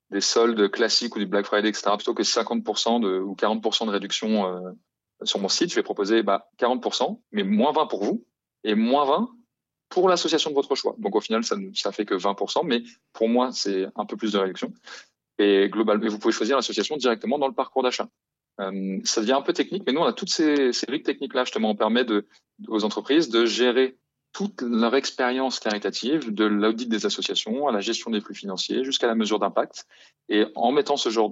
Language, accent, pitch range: French, French, 100-125 Hz